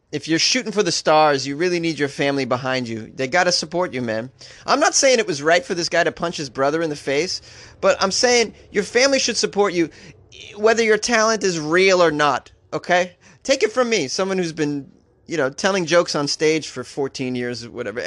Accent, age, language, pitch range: American, 30-49, English, 130-195 Hz